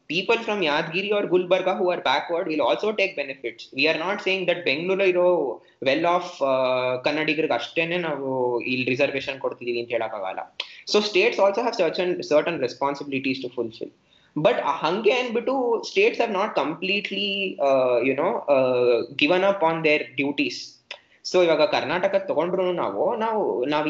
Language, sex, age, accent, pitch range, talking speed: Kannada, male, 20-39, native, 145-205 Hz, 160 wpm